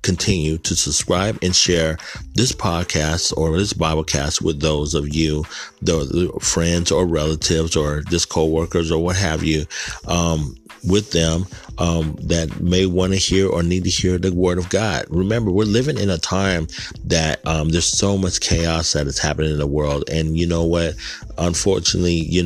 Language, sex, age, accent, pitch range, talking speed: English, male, 30-49, American, 80-90 Hz, 180 wpm